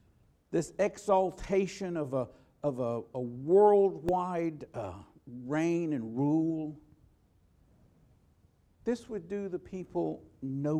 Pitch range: 130-195 Hz